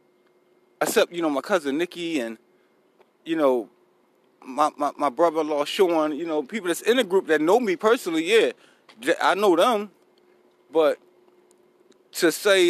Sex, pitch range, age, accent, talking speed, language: male, 160-255 Hz, 20-39, American, 160 wpm, English